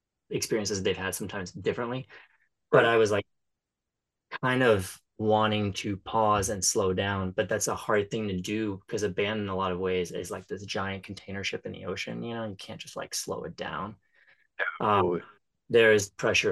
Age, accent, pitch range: 20-39, American, 95-110 Hz